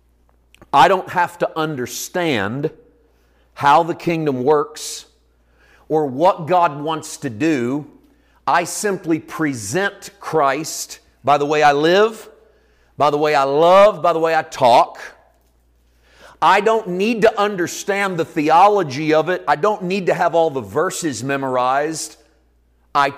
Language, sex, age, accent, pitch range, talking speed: English, male, 50-69, American, 140-190 Hz, 135 wpm